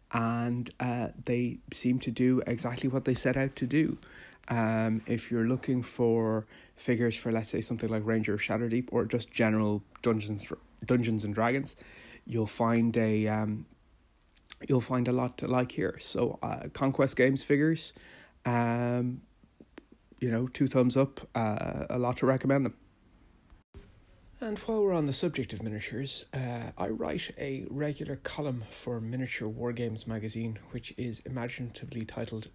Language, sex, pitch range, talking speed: English, male, 110-130 Hz, 155 wpm